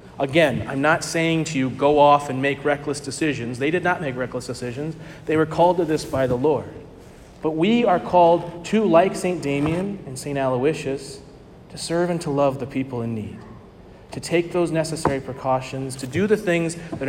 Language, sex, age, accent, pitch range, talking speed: English, male, 40-59, American, 125-155 Hz, 195 wpm